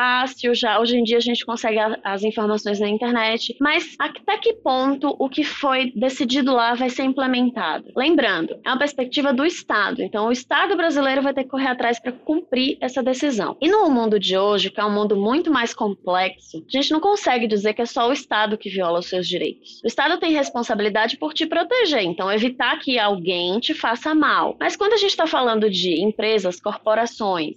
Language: Portuguese